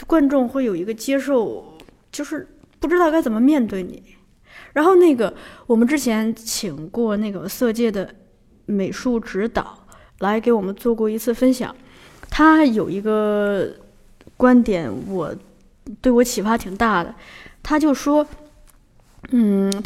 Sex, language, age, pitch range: female, Chinese, 20-39, 205-260 Hz